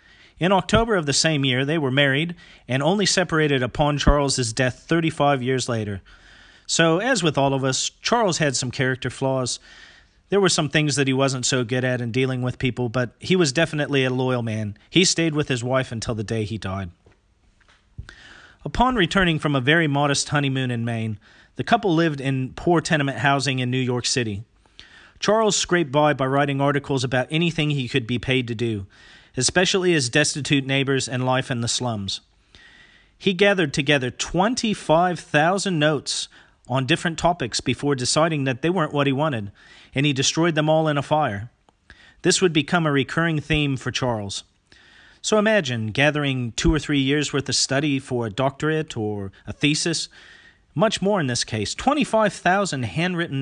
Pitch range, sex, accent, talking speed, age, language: 125-160 Hz, male, American, 175 wpm, 40-59, English